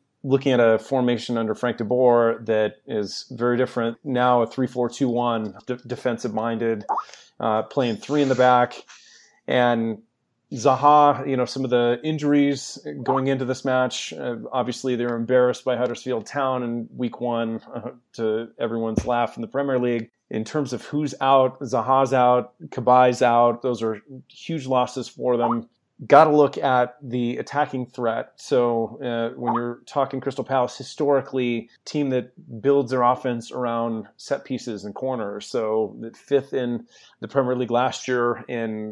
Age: 30-49